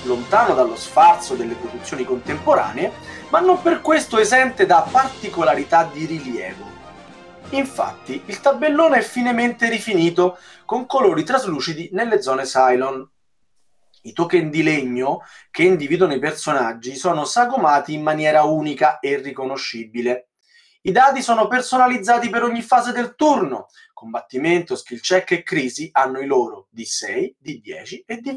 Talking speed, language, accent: 140 wpm, Italian, native